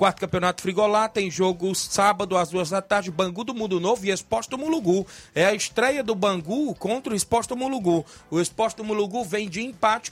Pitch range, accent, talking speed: 185-220 Hz, Brazilian, 190 wpm